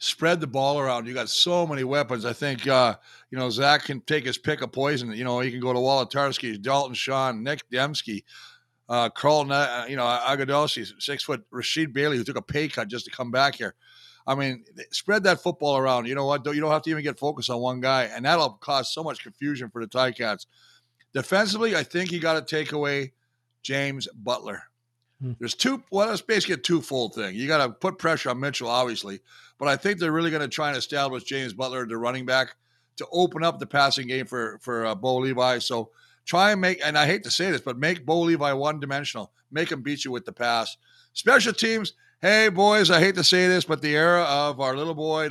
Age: 50-69